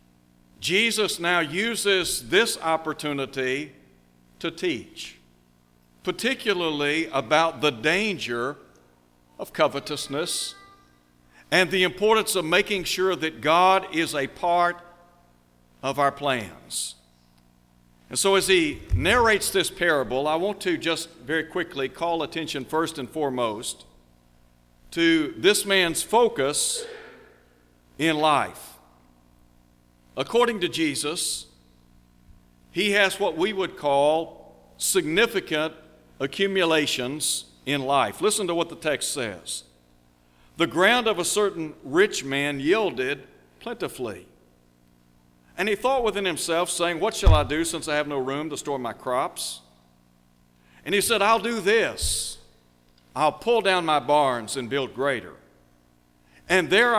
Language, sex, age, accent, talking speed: English, male, 60-79, American, 120 wpm